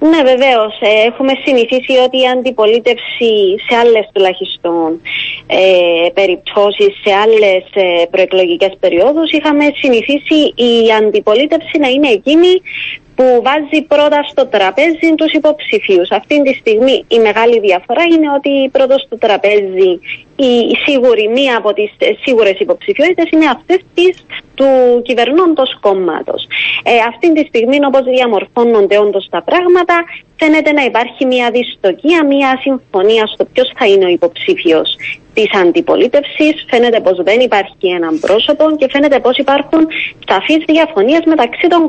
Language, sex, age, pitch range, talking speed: Greek, female, 20-39, 205-300 Hz, 125 wpm